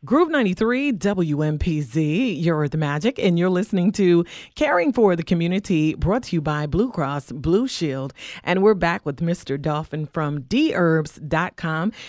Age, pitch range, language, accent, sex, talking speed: 40-59, 155-190 Hz, English, American, female, 150 wpm